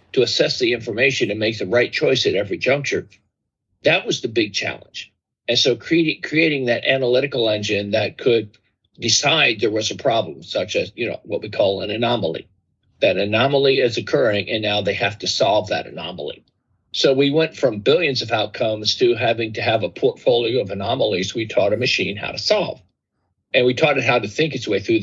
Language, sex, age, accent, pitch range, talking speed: English, male, 50-69, American, 100-135 Hz, 195 wpm